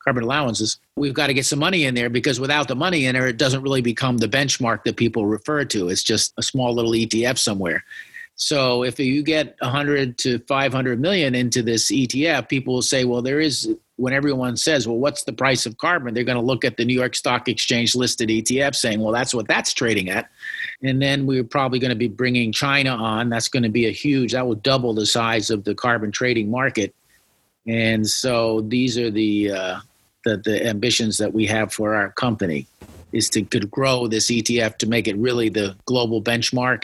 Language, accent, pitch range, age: English, American, 115-135 Hz, 50-69